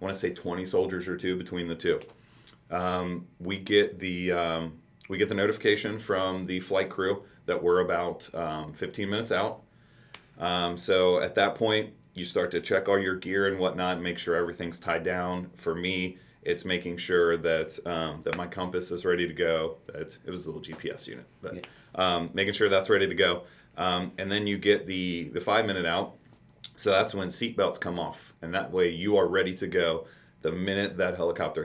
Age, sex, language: 30-49, male, English